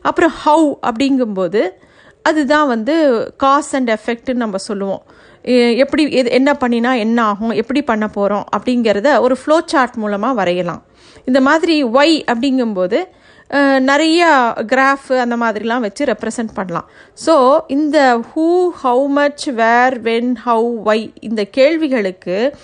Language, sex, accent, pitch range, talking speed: Tamil, female, native, 220-280 Hz, 120 wpm